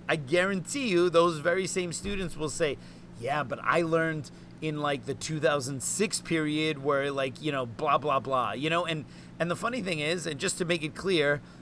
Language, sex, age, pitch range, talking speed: English, male, 30-49, 130-170 Hz, 200 wpm